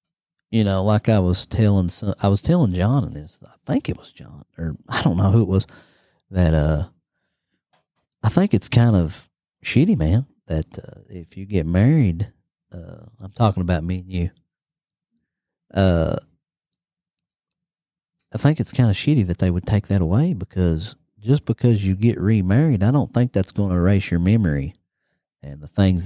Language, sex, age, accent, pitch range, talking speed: English, male, 40-59, American, 85-110 Hz, 175 wpm